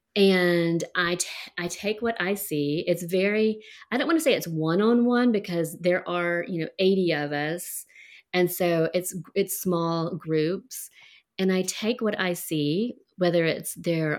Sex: female